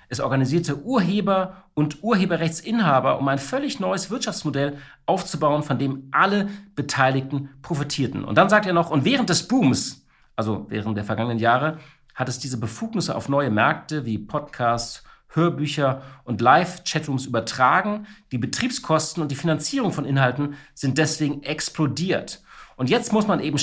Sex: male